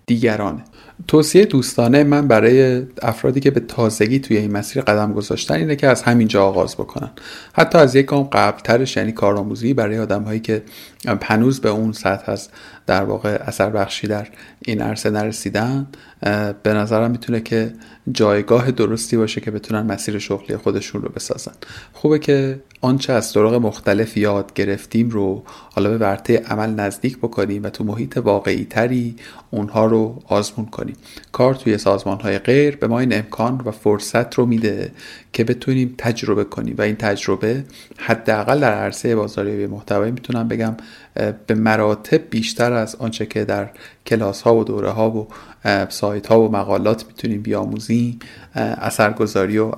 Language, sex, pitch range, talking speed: Persian, male, 105-120 Hz, 155 wpm